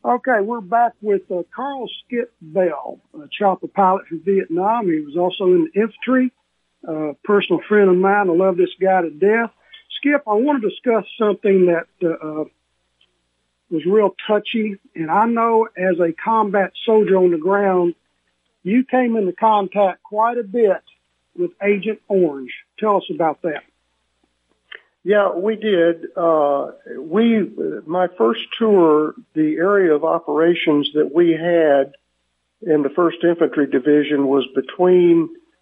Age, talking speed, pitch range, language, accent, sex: 60-79, 150 wpm, 140-205 Hz, English, American, male